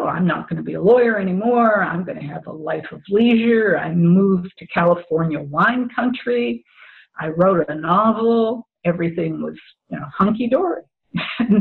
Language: English